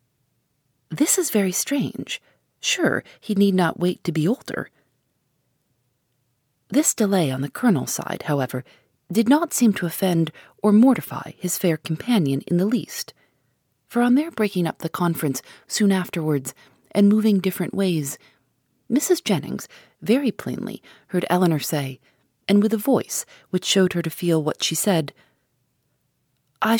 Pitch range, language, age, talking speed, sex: 145-215 Hz, English, 40-59, 145 wpm, female